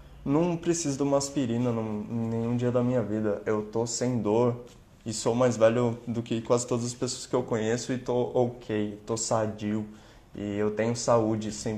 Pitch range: 110-130 Hz